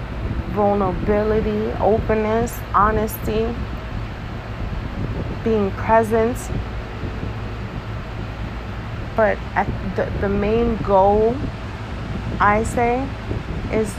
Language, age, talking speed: English, 30-49, 60 wpm